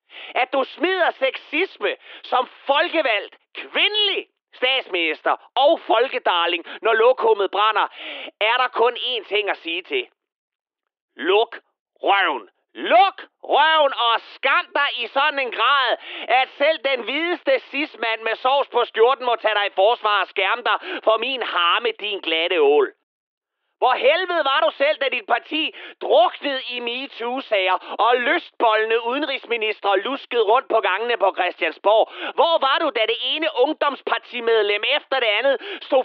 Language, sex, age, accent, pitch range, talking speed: Danish, male, 40-59, native, 245-345 Hz, 145 wpm